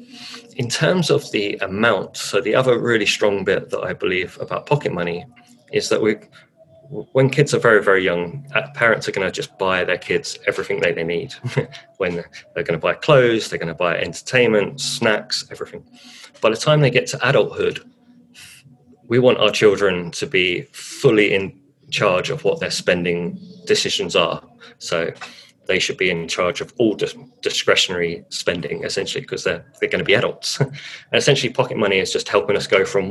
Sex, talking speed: male, 185 wpm